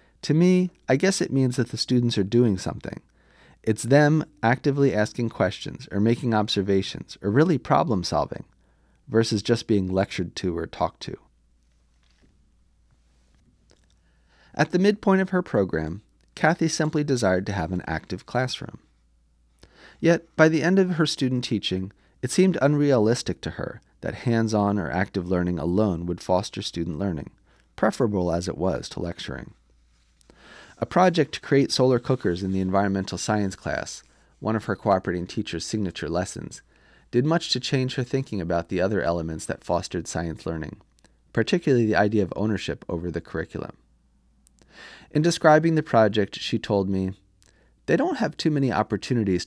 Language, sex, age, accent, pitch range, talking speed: English, male, 30-49, American, 90-135 Hz, 155 wpm